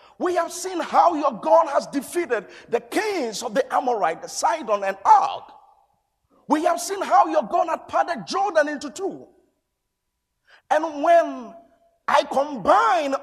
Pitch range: 235-340 Hz